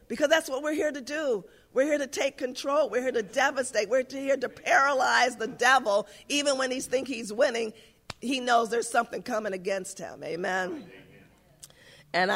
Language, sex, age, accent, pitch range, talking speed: English, female, 50-69, American, 175-225 Hz, 180 wpm